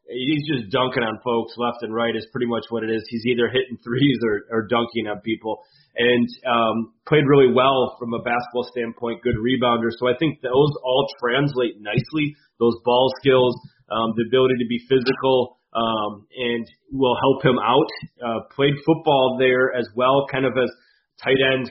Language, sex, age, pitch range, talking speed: English, male, 30-49, 120-130 Hz, 185 wpm